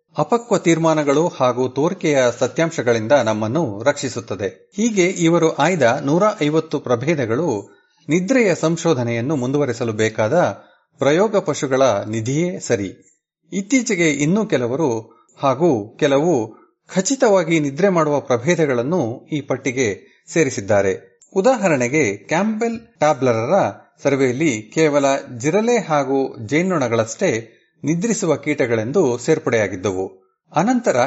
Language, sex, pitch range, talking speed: Kannada, male, 120-170 Hz, 85 wpm